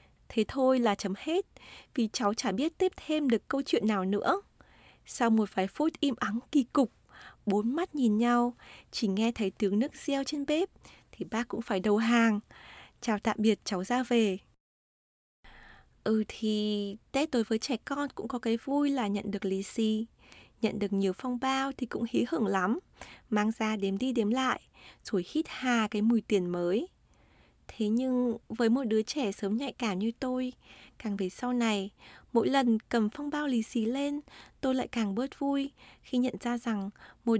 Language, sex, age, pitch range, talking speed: Vietnamese, female, 20-39, 210-265 Hz, 195 wpm